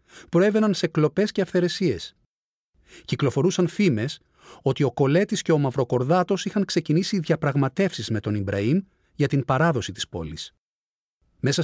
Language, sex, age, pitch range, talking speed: Greek, male, 40-59, 125-175 Hz, 135 wpm